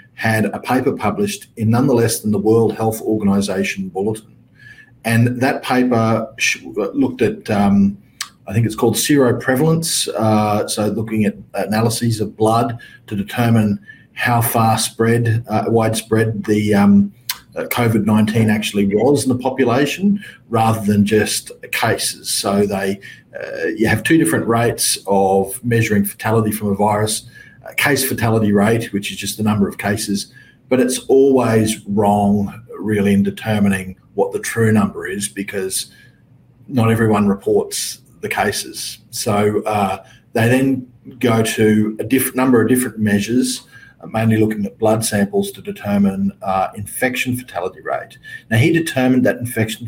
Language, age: English, 40-59